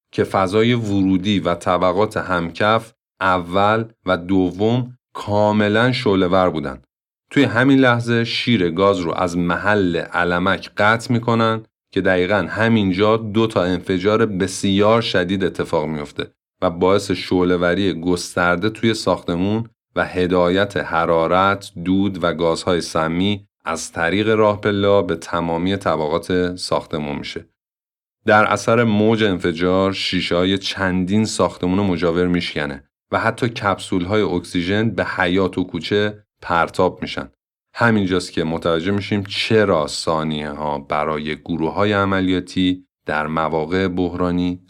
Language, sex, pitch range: Persian, male, 85-105 Hz